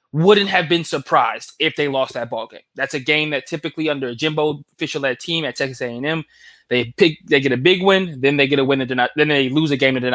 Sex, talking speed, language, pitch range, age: male, 265 wpm, English, 130-170 Hz, 20-39